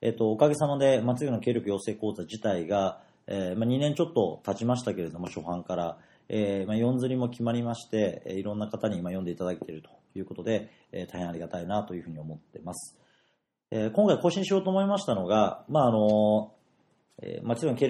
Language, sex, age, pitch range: Japanese, male, 40-59, 95-130 Hz